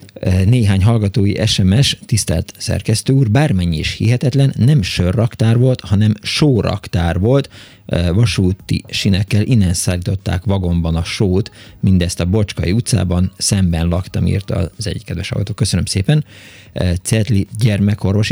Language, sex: Hungarian, male